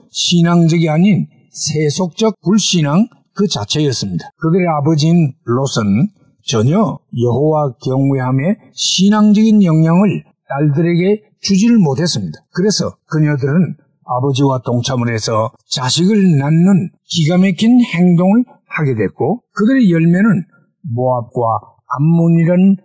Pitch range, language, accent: 130-195 Hz, Korean, native